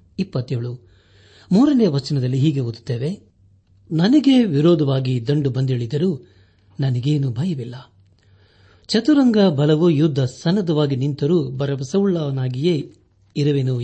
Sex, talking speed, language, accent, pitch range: male, 75 wpm, Kannada, native, 110-160 Hz